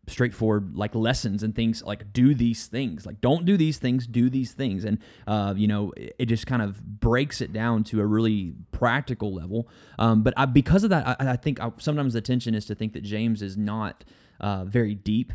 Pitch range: 105-125 Hz